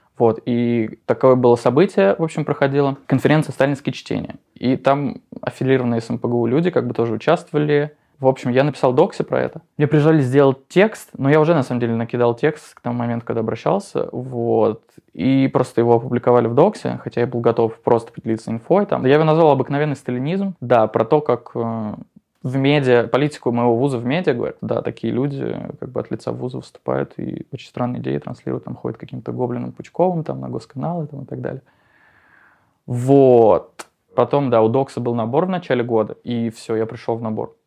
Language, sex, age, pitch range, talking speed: Russian, male, 20-39, 115-145 Hz, 190 wpm